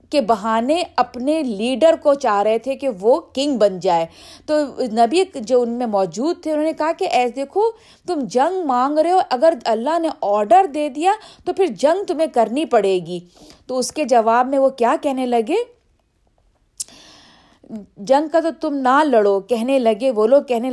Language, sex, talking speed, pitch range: Urdu, female, 180 wpm, 205-285 Hz